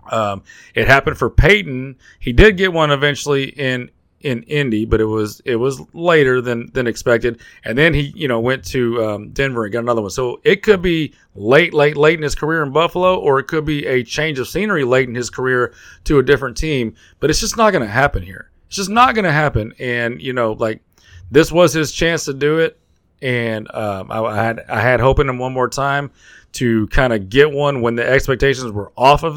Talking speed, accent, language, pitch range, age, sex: 230 wpm, American, English, 120-160 Hz, 30-49, male